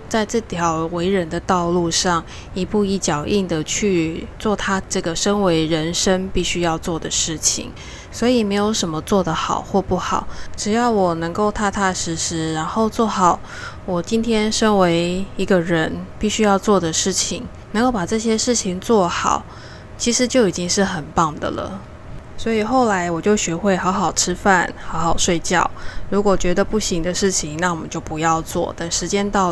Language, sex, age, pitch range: Chinese, female, 10-29, 170-210 Hz